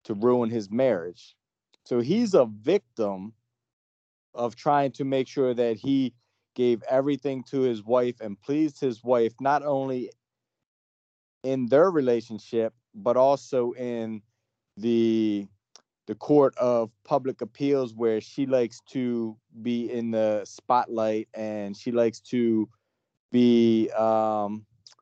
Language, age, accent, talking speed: English, 30-49, American, 125 wpm